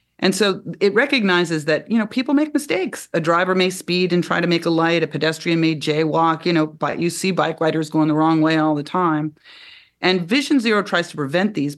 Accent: American